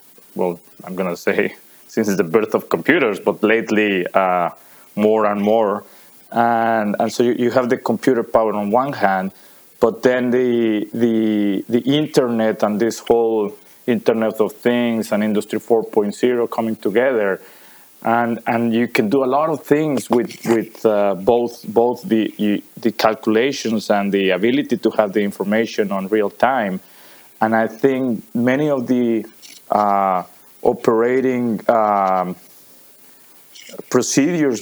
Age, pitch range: 20-39, 100-115 Hz